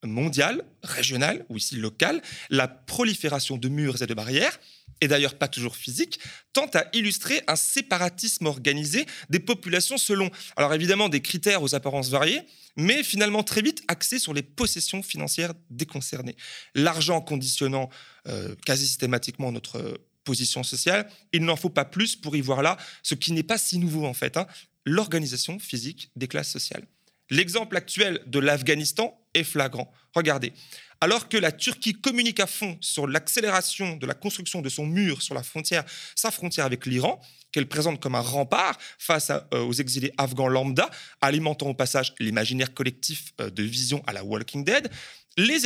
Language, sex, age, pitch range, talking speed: French, male, 30-49, 135-195 Hz, 170 wpm